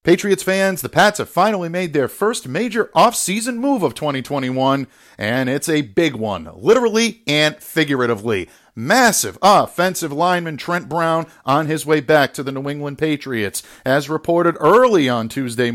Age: 50-69